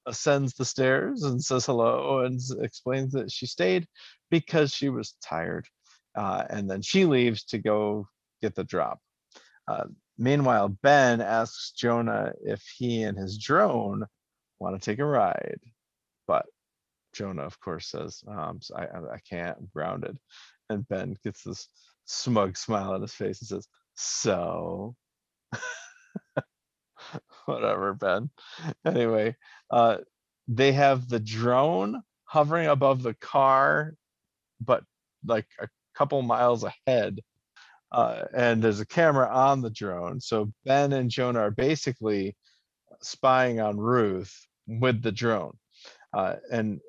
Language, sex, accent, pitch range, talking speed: English, male, American, 110-140 Hz, 130 wpm